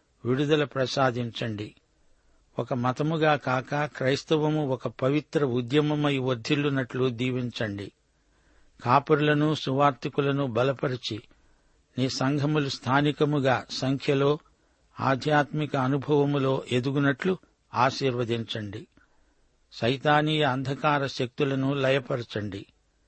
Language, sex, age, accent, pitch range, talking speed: Telugu, male, 60-79, native, 125-145 Hz, 70 wpm